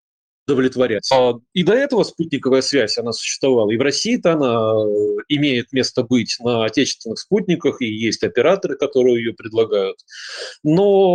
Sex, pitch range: male, 125-180 Hz